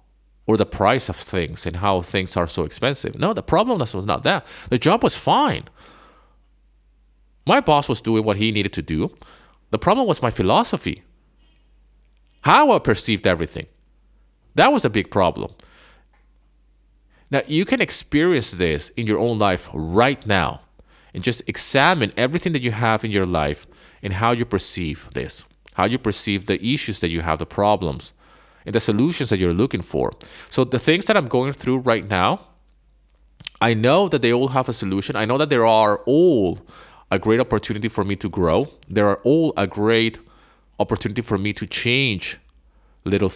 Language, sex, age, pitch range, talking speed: English, male, 30-49, 90-115 Hz, 175 wpm